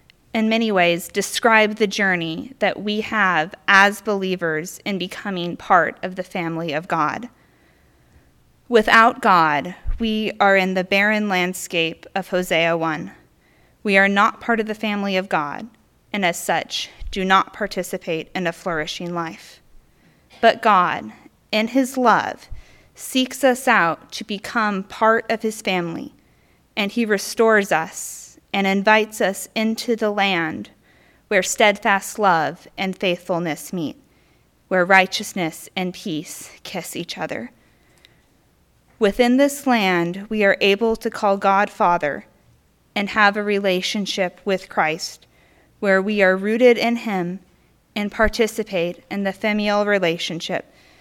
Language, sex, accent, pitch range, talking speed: English, female, American, 180-215 Hz, 135 wpm